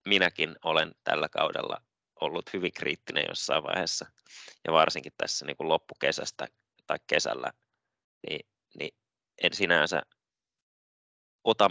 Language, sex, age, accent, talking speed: Finnish, male, 20-39, native, 115 wpm